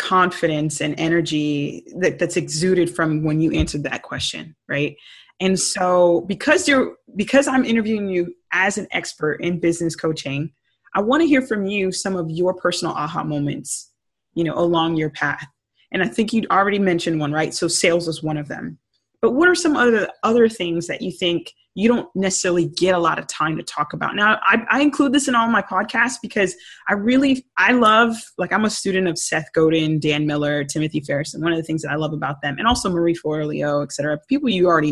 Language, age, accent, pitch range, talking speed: English, 20-39, American, 155-225 Hz, 210 wpm